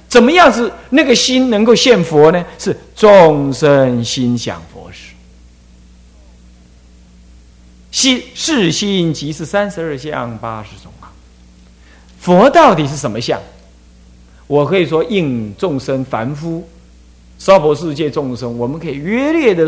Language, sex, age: Chinese, male, 50-69